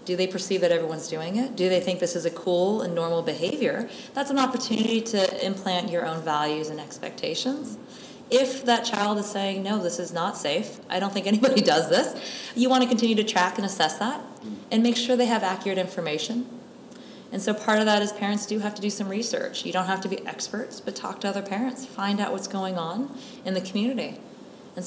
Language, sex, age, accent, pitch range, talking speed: English, female, 20-39, American, 175-215 Hz, 220 wpm